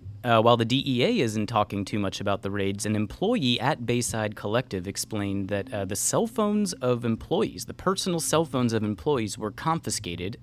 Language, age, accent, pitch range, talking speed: English, 30-49, American, 105-130 Hz, 185 wpm